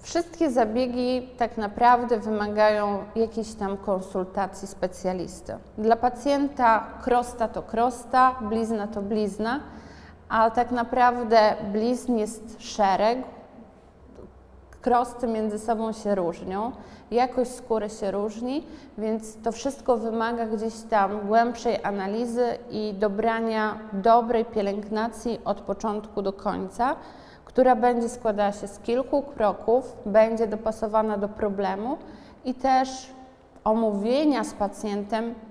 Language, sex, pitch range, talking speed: Polish, female, 210-240 Hz, 110 wpm